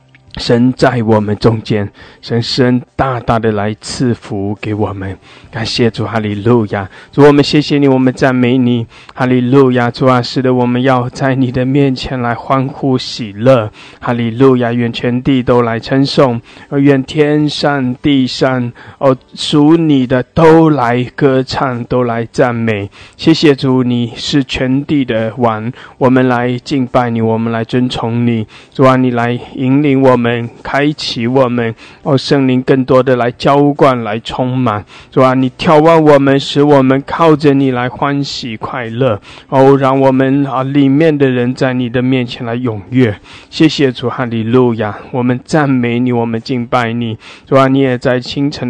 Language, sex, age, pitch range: English, male, 20-39, 115-135 Hz